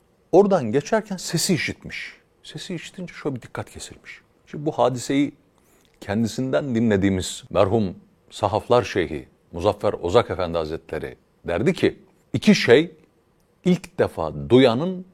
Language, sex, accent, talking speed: Turkish, male, native, 115 wpm